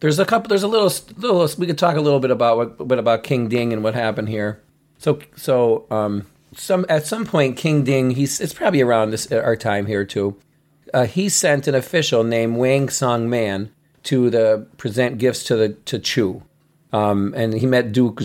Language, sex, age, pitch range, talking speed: English, male, 40-59, 110-140 Hz, 205 wpm